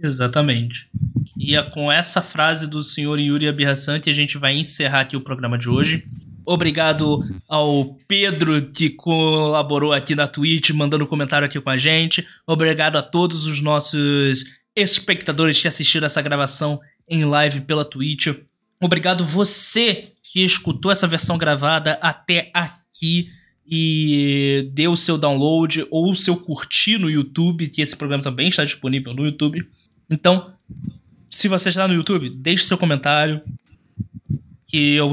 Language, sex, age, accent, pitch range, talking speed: Portuguese, male, 20-39, Brazilian, 140-170 Hz, 150 wpm